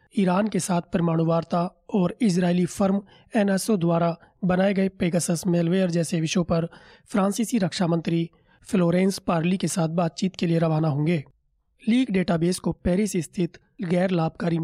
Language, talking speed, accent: Hindi, 150 wpm, native